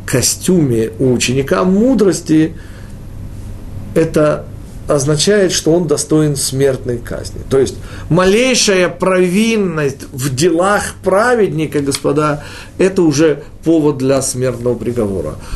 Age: 50-69